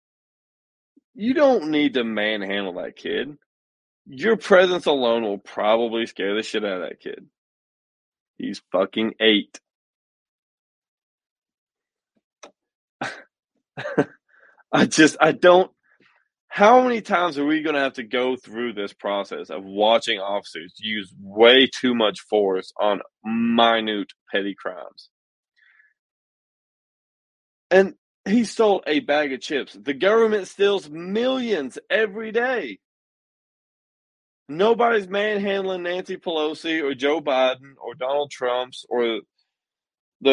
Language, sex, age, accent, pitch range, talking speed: English, male, 20-39, American, 115-180 Hz, 115 wpm